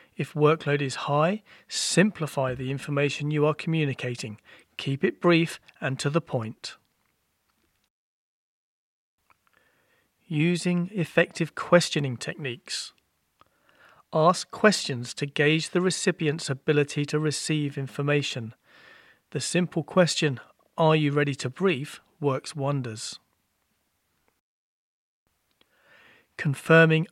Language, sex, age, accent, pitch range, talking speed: English, male, 40-59, British, 130-165 Hz, 95 wpm